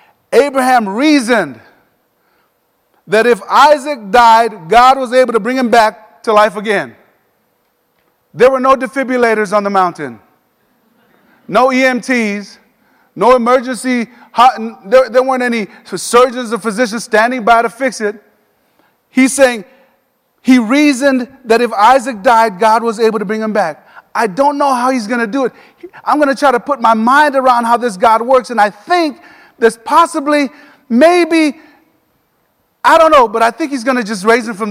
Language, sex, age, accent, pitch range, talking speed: English, male, 30-49, American, 230-275 Hz, 165 wpm